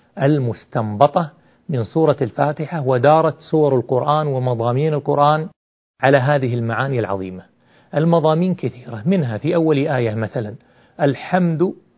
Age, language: 40-59, Arabic